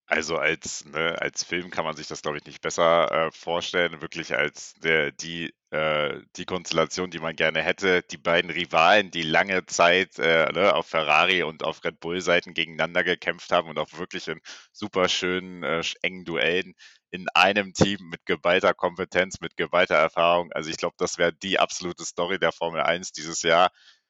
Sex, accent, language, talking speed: male, German, German, 185 wpm